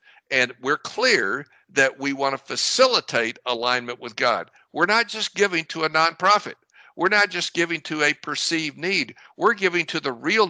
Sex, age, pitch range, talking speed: male, 60-79, 135-195 Hz, 175 wpm